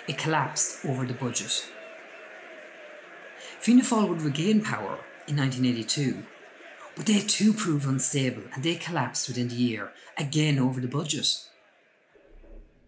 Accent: Irish